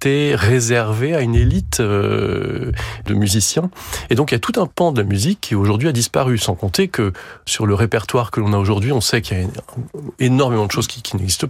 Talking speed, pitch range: 225 wpm, 105-125 Hz